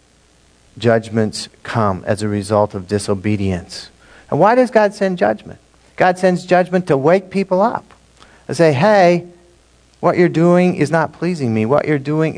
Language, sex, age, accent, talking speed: English, male, 50-69, American, 160 wpm